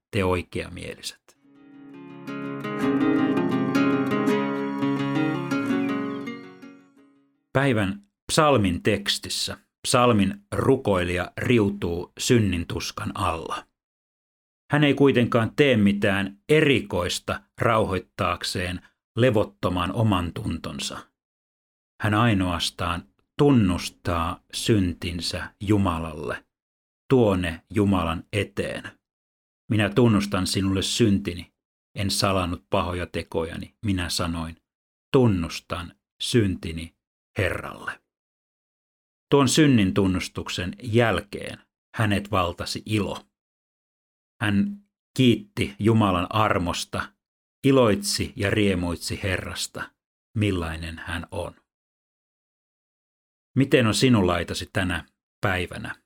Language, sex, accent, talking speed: Finnish, male, native, 70 wpm